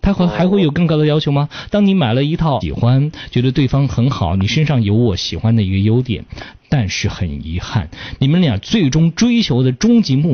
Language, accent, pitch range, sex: Chinese, native, 115-175 Hz, male